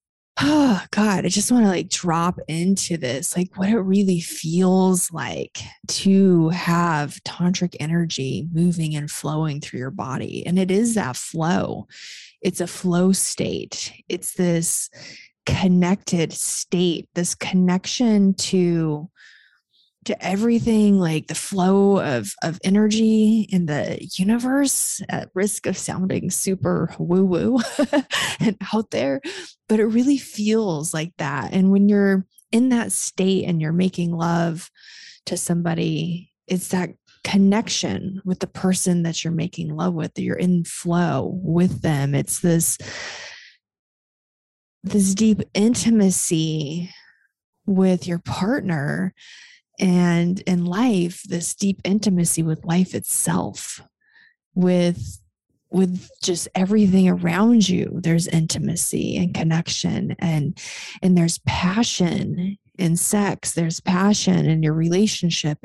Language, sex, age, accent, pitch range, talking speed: English, female, 20-39, American, 170-200 Hz, 120 wpm